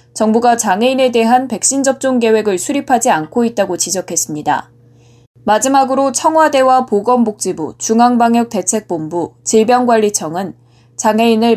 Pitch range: 185-255 Hz